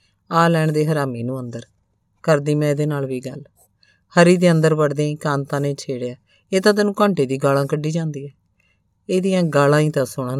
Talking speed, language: 190 wpm, Punjabi